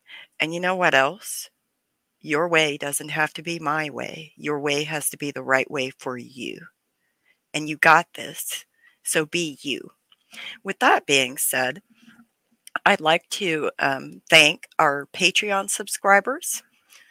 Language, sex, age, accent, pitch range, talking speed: English, female, 40-59, American, 140-175 Hz, 145 wpm